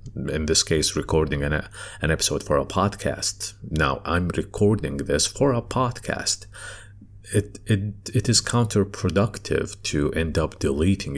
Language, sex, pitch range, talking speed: English, male, 80-105 Hz, 145 wpm